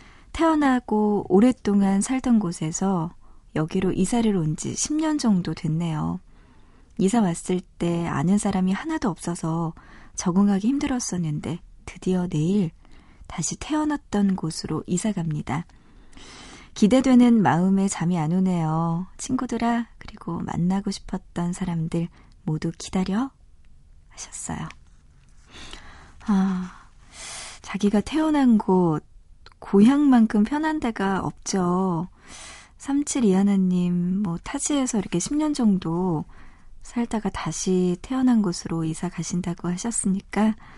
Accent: native